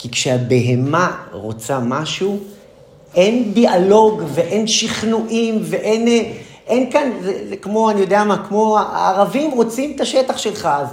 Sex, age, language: male, 40-59, Hebrew